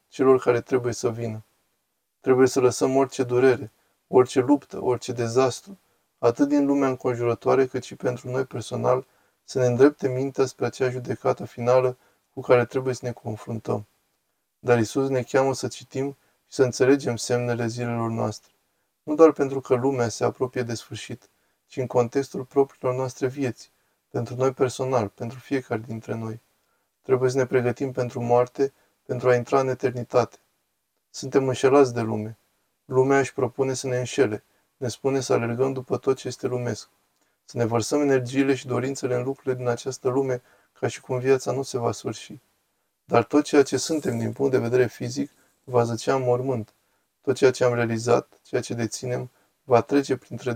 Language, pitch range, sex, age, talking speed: Romanian, 115-130 Hz, male, 20-39, 170 wpm